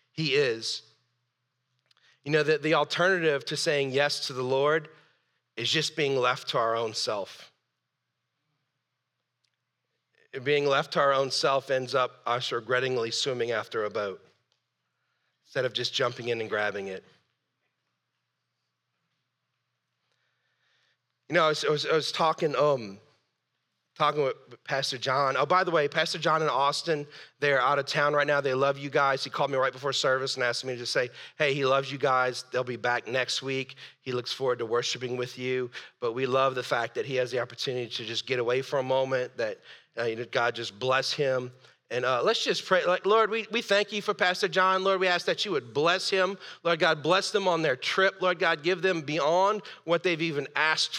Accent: American